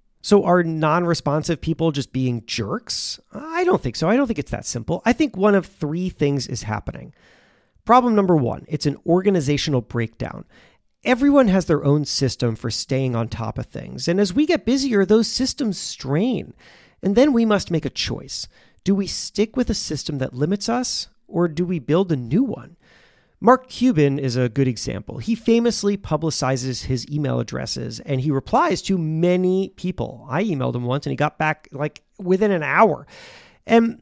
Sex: male